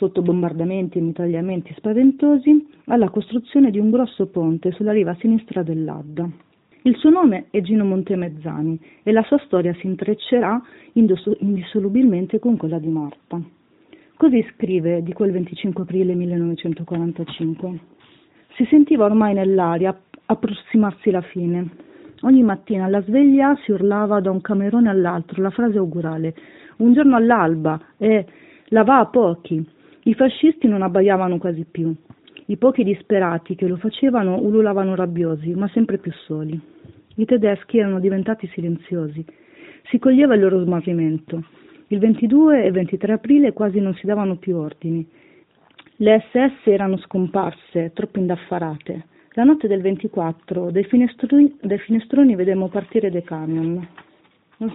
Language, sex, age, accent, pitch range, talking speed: Italian, female, 40-59, native, 175-235 Hz, 140 wpm